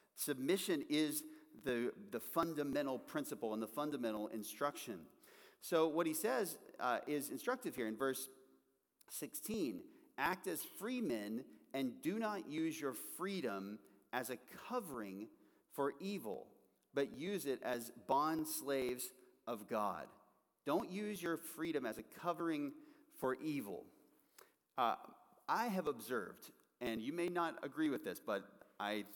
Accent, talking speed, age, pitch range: American, 135 wpm, 40-59, 120-185 Hz